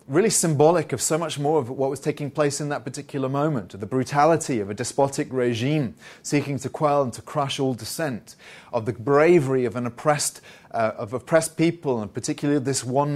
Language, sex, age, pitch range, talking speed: English, male, 30-49, 125-150 Hz, 195 wpm